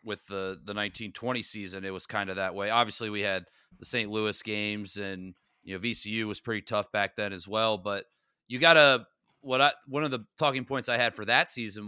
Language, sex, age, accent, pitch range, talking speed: English, male, 30-49, American, 105-130 Hz, 225 wpm